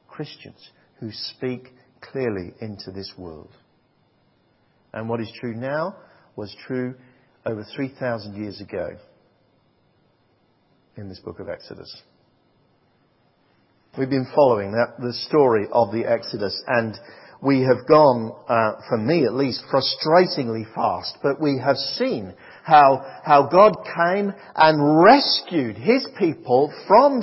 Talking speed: 125 wpm